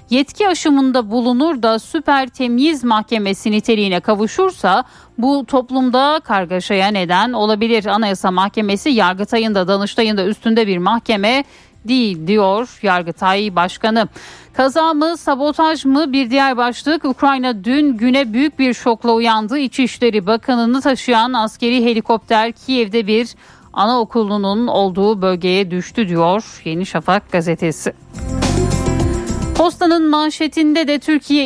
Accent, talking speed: native, 110 wpm